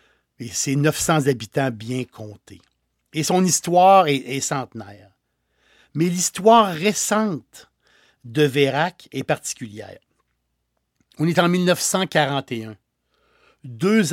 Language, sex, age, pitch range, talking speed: French, male, 60-79, 120-165 Hz, 100 wpm